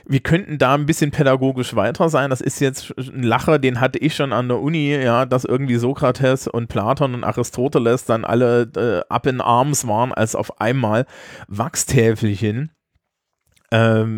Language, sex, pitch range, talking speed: German, male, 115-140 Hz, 170 wpm